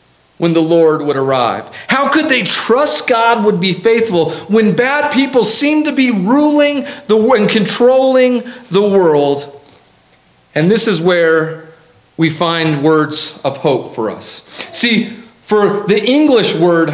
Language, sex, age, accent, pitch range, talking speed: English, male, 40-59, American, 150-210 Hz, 145 wpm